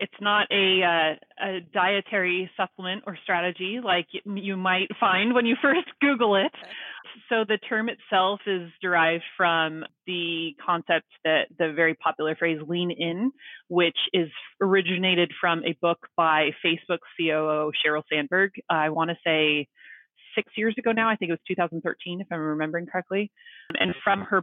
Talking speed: 160 wpm